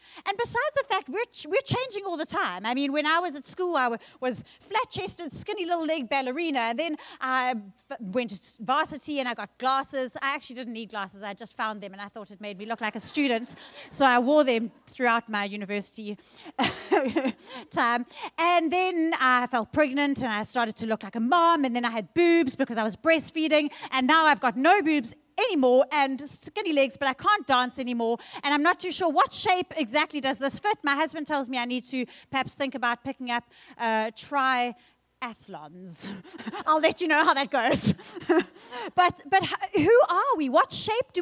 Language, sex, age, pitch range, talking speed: English, female, 30-49, 245-335 Hz, 205 wpm